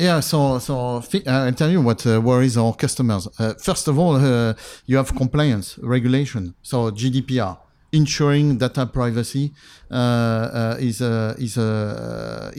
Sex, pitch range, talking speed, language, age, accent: male, 115-135 Hz, 155 wpm, Dutch, 50-69, French